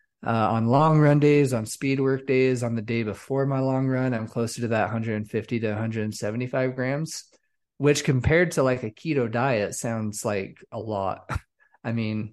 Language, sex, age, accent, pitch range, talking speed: English, male, 30-49, American, 110-135 Hz, 180 wpm